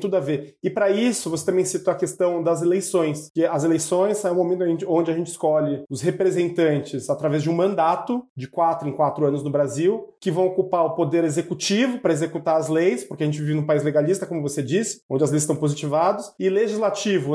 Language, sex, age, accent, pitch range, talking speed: Portuguese, male, 30-49, Brazilian, 165-225 Hz, 225 wpm